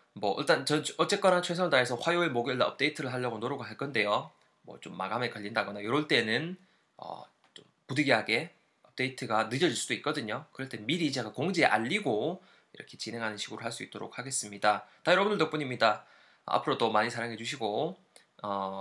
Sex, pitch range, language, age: male, 110-170 Hz, Korean, 20-39